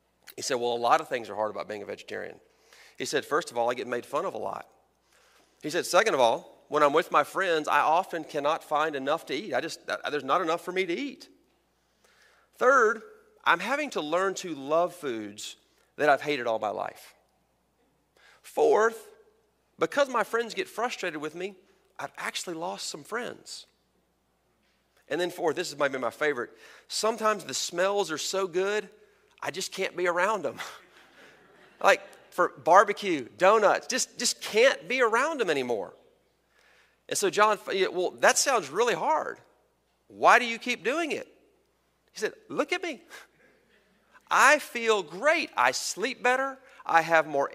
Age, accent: 40-59, American